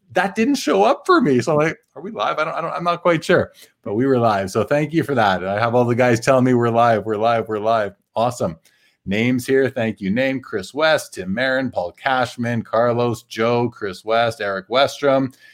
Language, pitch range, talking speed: English, 105-140 Hz, 235 wpm